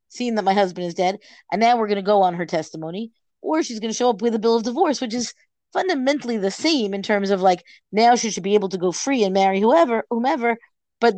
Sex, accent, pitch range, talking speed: female, American, 185-235 Hz, 260 wpm